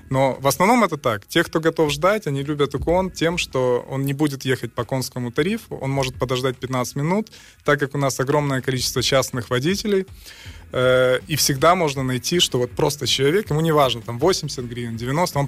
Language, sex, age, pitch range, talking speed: Russian, male, 20-39, 120-145 Hz, 195 wpm